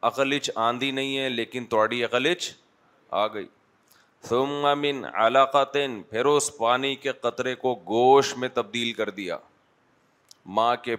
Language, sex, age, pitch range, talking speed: Urdu, male, 30-49, 115-130 Hz, 130 wpm